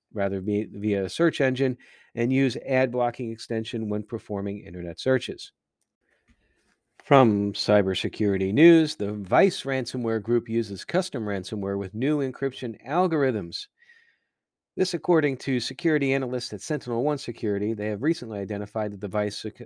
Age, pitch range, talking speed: 50-69, 105-135 Hz, 135 wpm